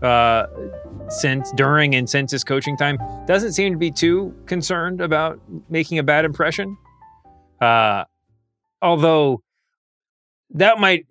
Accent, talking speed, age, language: American, 125 wpm, 20-39, English